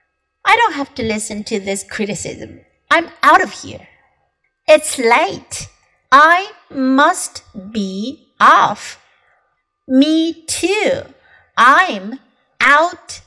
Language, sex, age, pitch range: Chinese, female, 50-69, 225-315 Hz